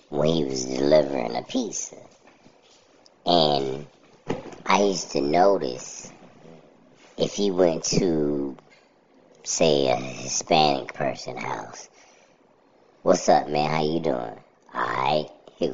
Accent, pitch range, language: American, 75-95 Hz, English